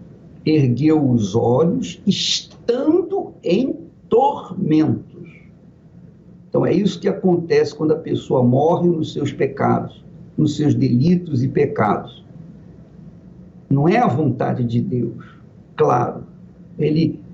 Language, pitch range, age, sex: Portuguese, 155-195 Hz, 60-79, male